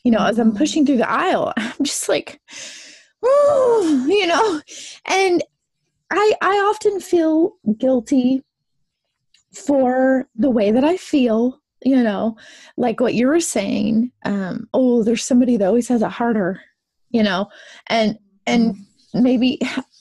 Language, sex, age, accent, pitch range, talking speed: English, female, 20-39, American, 235-320 Hz, 140 wpm